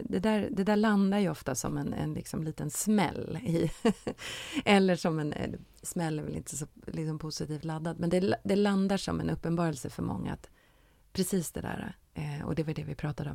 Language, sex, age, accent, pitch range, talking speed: Swedish, female, 30-49, native, 150-180 Hz, 195 wpm